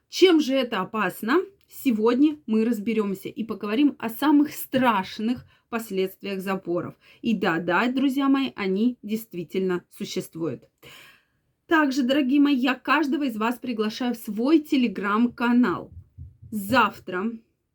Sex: female